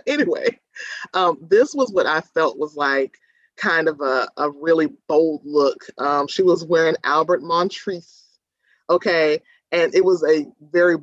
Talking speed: 150 wpm